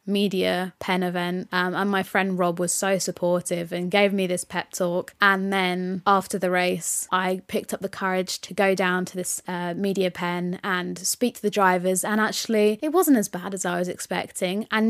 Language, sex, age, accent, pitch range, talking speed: English, female, 20-39, British, 180-225 Hz, 205 wpm